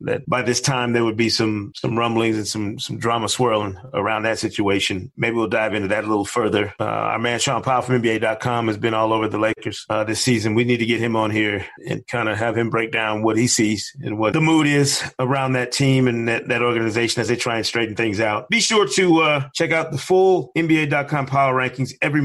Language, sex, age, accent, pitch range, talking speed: English, male, 30-49, American, 110-135 Hz, 245 wpm